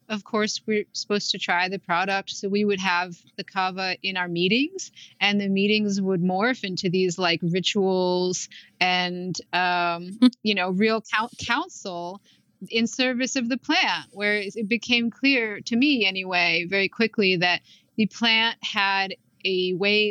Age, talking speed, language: 30-49, 155 wpm, English